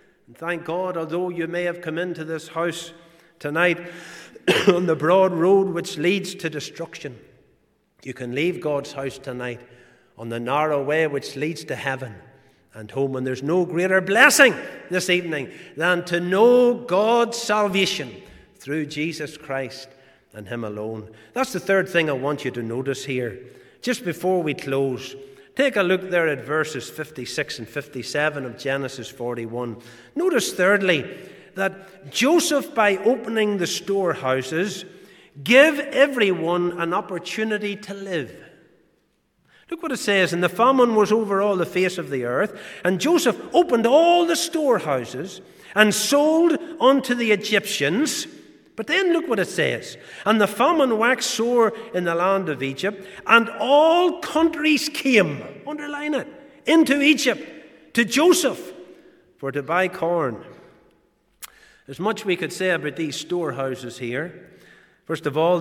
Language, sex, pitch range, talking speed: English, male, 150-220 Hz, 145 wpm